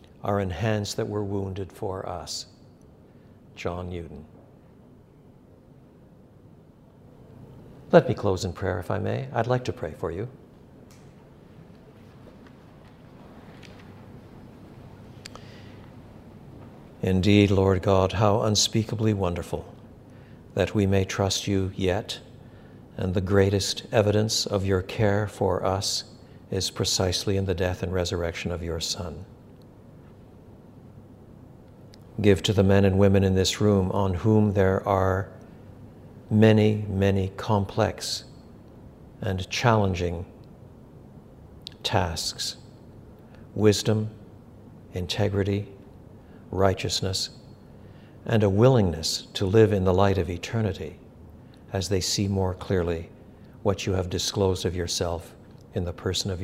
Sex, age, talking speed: male, 60-79, 110 wpm